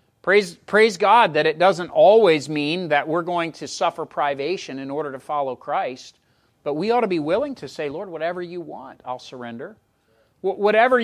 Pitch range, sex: 145-200 Hz, male